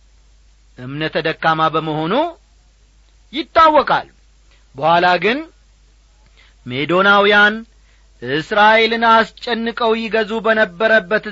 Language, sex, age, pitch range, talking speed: Amharic, male, 40-59, 175-250 Hz, 60 wpm